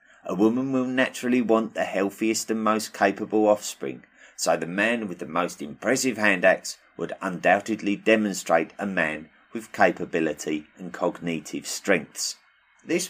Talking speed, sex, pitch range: 140 wpm, male, 95-115 Hz